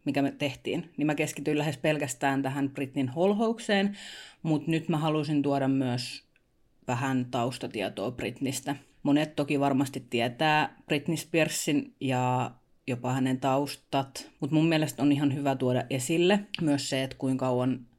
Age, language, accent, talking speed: 30-49, Finnish, native, 145 wpm